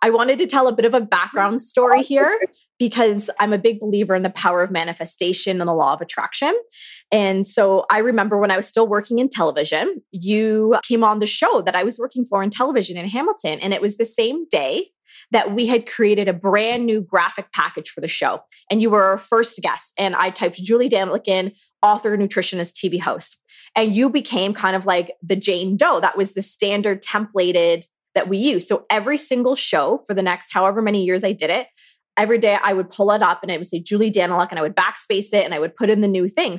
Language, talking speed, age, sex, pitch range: English, 230 wpm, 20-39, female, 185-220 Hz